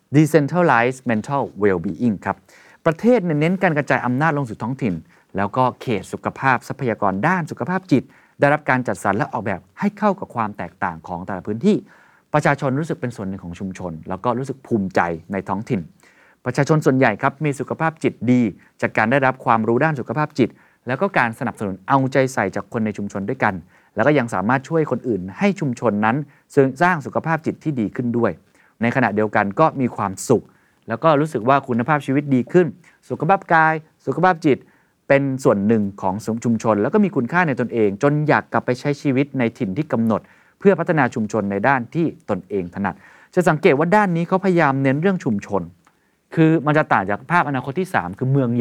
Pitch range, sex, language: 110-150 Hz, male, Thai